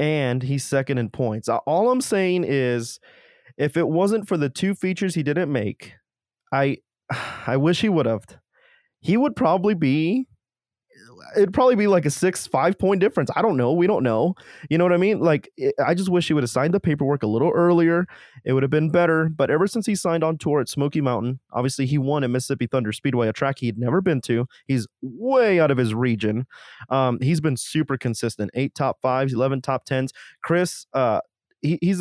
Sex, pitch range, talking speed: male, 120-160 Hz, 205 wpm